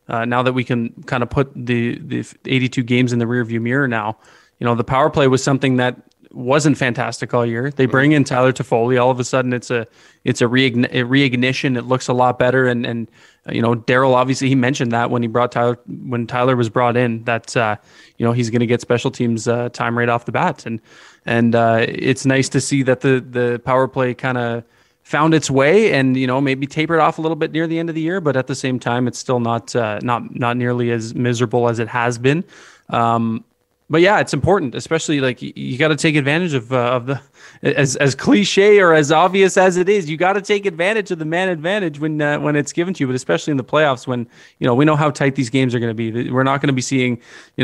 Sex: male